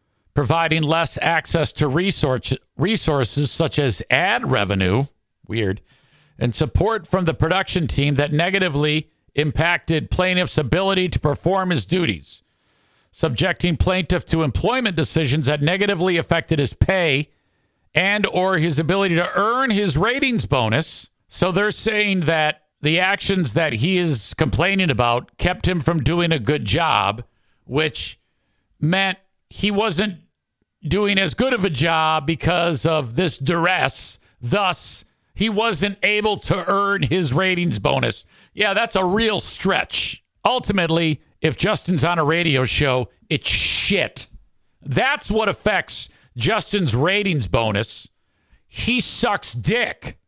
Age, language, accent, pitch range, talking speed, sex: 50-69, English, American, 140-190 Hz, 130 wpm, male